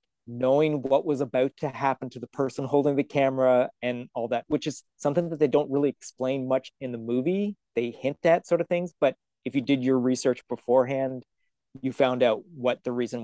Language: English